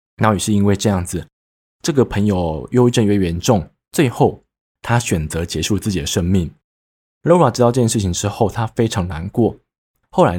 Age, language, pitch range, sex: 20-39, Chinese, 90-125 Hz, male